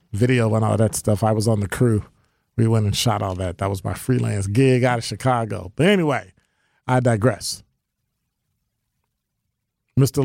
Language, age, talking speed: English, 40-59, 170 wpm